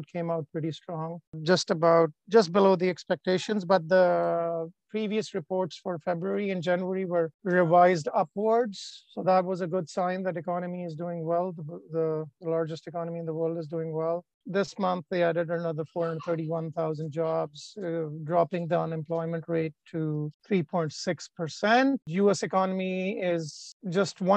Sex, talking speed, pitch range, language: male, 150 wpm, 165-190 Hz, English